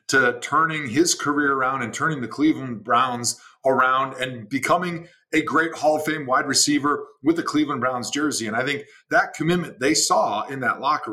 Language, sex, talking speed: English, male, 190 wpm